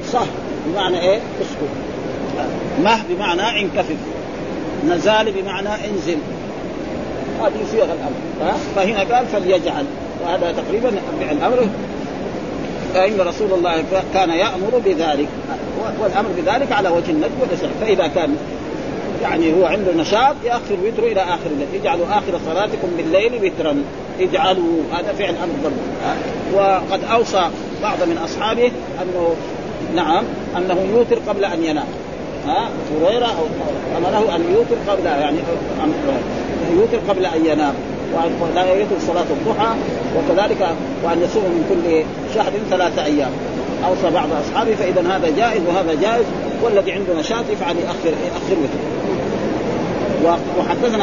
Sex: male